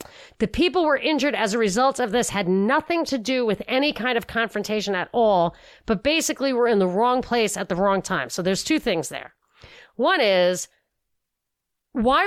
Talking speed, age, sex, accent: 190 wpm, 40-59, female, American